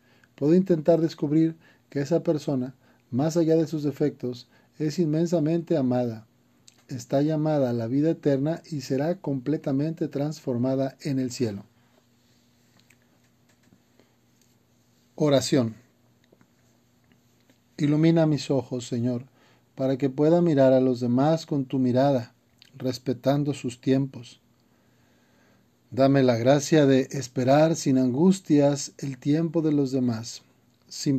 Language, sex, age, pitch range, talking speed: Spanish, male, 40-59, 125-150 Hz, 110 wpm